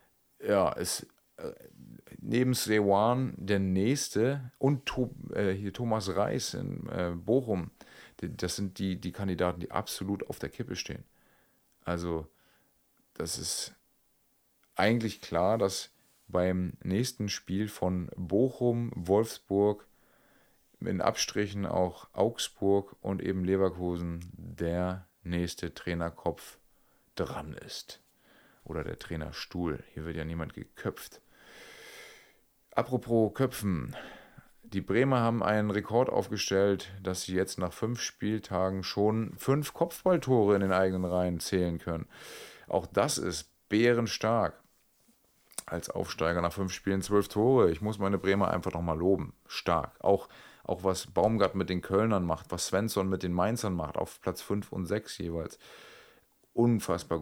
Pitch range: 90-110 Hz